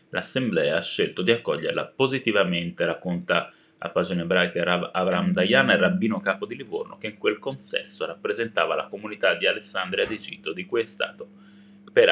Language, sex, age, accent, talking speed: Italian, male, 20-39, native, 165 wpm